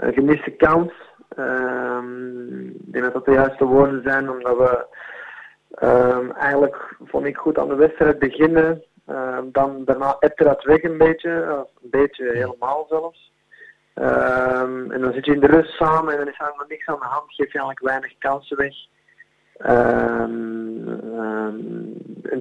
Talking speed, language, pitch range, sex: 160 wpm, Dutch, 125-155 Hz, male